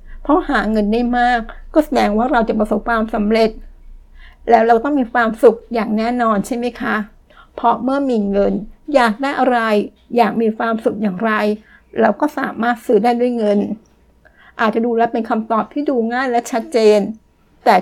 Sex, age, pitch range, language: female, 60-79, 215-245 Hz, Thai